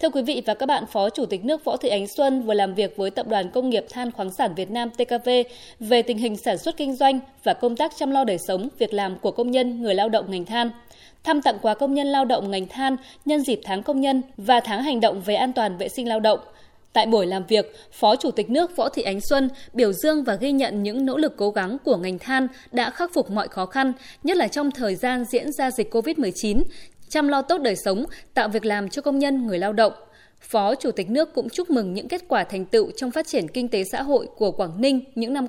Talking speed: 260 wpm